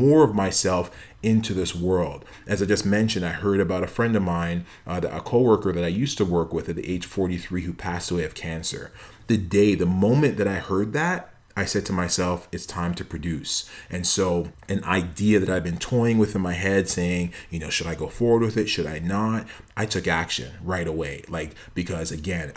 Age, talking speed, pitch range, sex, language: 30-49, 225 wpm, 90-105 Hz, male, English